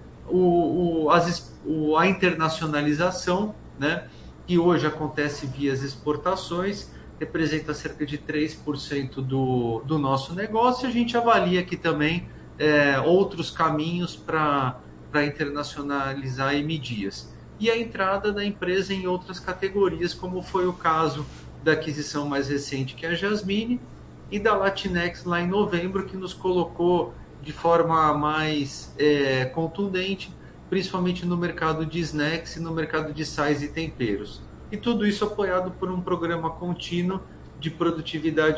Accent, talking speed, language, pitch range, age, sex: Brazilian, 140 wpm, Portuguese, 150-185 Hz, 40-59, male